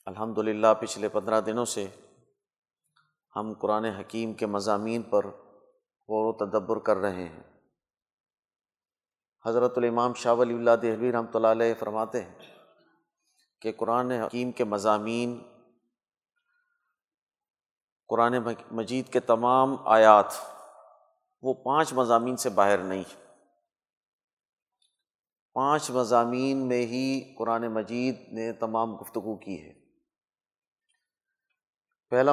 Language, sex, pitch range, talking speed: Urdu, male, 110-135 Hz, 105 wpm